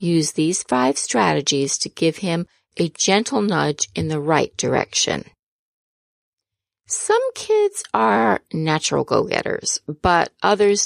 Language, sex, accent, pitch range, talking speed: English, female, American, 145-220 Hz, 115 wpm